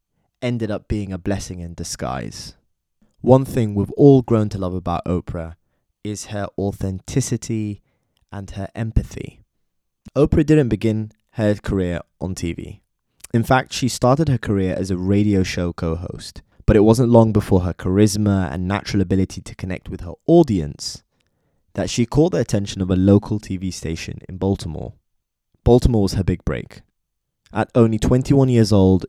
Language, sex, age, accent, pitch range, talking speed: English, male, 20-39, British, 90-115 Hz, 160 wpm